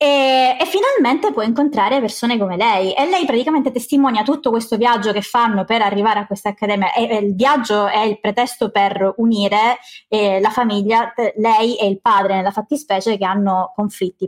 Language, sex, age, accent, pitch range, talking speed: Italian, female, 20-39, native, 205-265 Hz, 185 wpm